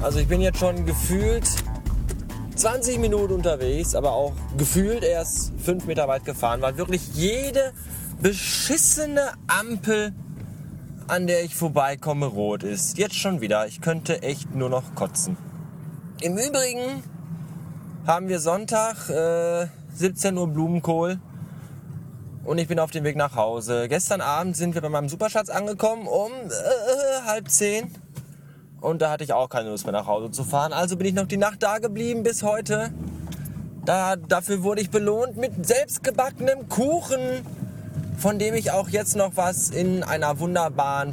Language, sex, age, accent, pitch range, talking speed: German, male, 20-39, German, 140-190 Hz, 155 wpm